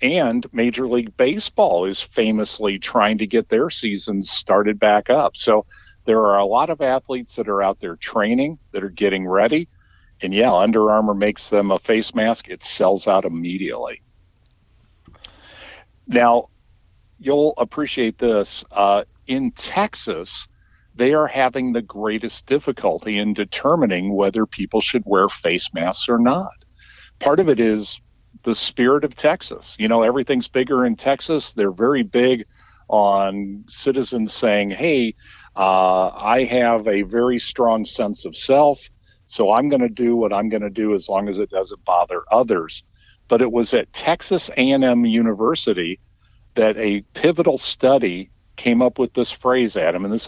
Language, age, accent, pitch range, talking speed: English, 50-69, American, 100-125 Hz, 160 wpm